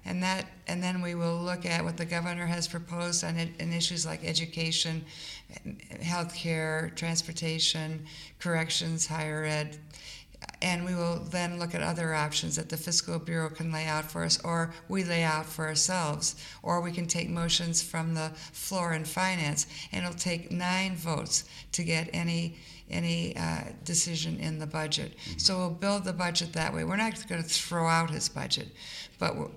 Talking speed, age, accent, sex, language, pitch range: 175 wpm, 60-79, American, female, English, 160-175 Hz